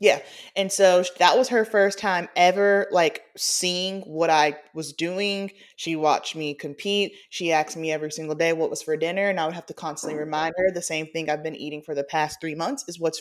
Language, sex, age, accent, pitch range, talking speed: English, female, 20-39, American, 165-205 Hz, 225 wpm